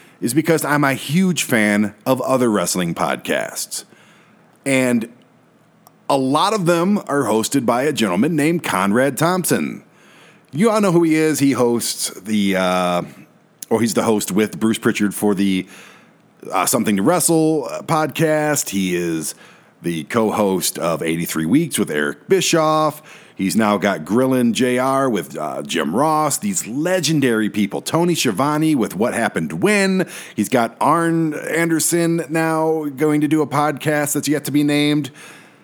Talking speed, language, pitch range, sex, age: 155 wpm, English, 105-155 Hz, male, 40-59